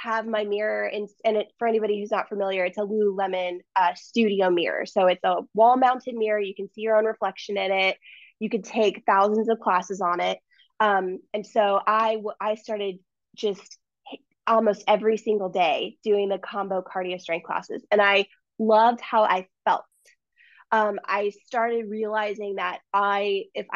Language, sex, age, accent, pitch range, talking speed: English, female, 20-39, American, 200-235 Hz, 170 wpm